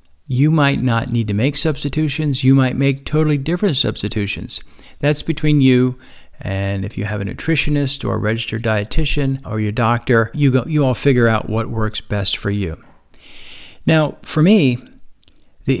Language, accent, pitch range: English, American, 110-135 Hz